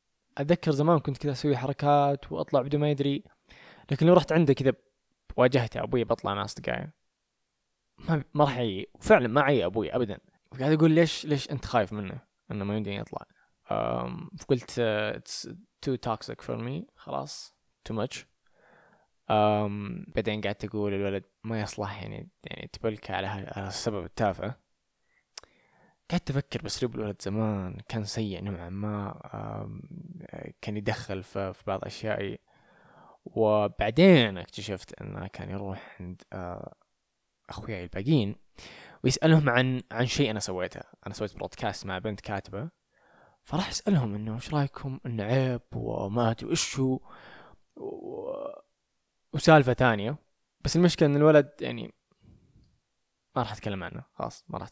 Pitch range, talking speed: 105-150 Hz, 135 wpm